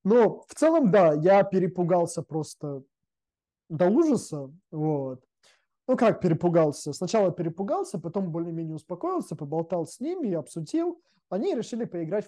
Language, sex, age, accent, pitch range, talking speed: Russian, male, 20-39, native, 150-200 Hz, 125 wpm